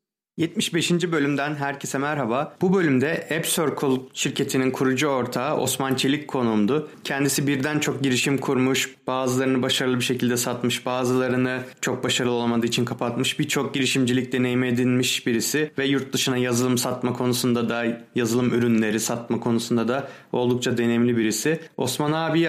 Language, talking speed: Turkish, 140 wpm